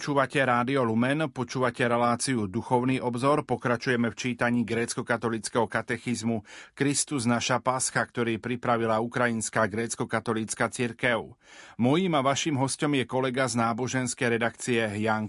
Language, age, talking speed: Slovak, 40-59, 120 wpm